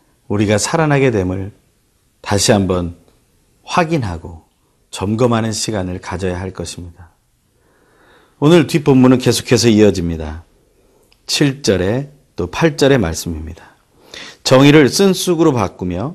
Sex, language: male, Korean